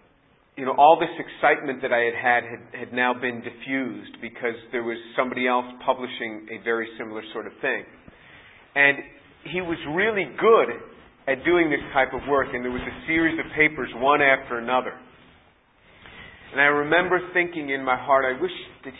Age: 40-59